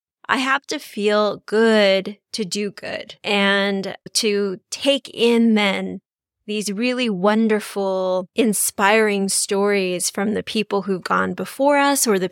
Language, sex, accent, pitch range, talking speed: English, female, American, 185-230 Hz, 130 wpm